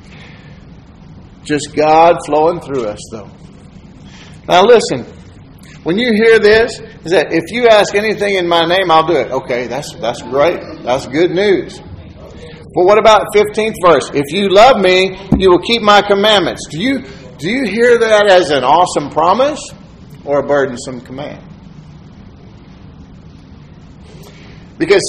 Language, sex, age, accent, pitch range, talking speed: English, male, 50-69, American, 170-225 Hz, 145 wpm